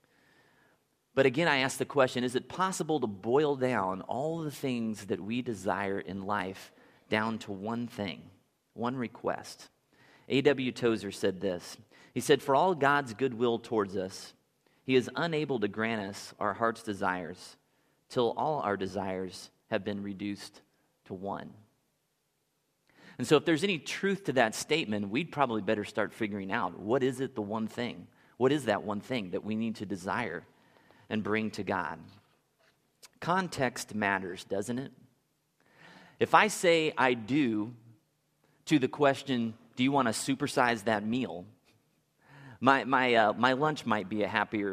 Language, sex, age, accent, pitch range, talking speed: English, male, 30-49, American, 105-140 Hz, 160 wpm